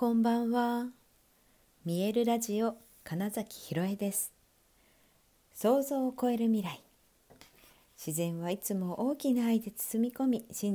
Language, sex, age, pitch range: Japanese, female, 50-69, 170-230 Hz